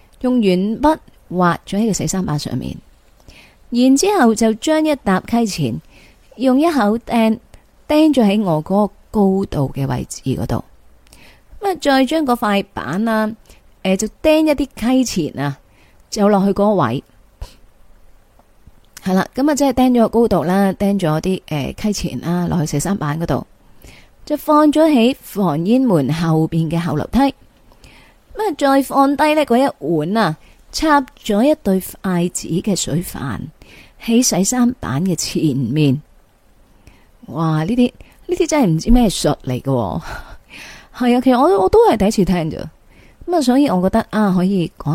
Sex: female